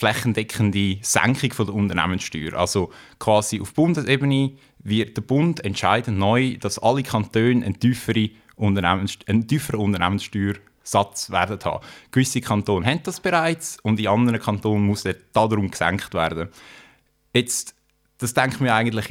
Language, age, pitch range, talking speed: German, 20-39, 100-120 Hz, 130 wpm